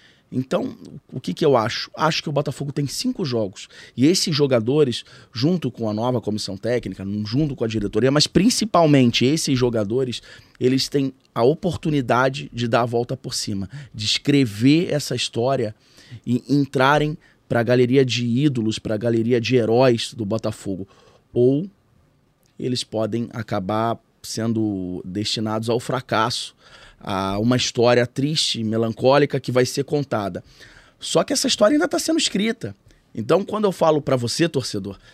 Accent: Brazilian